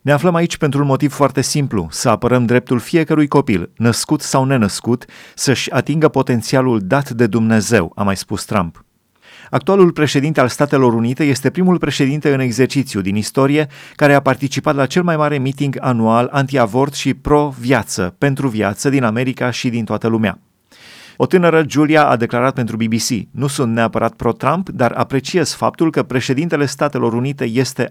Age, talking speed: 30-49, 165 wpm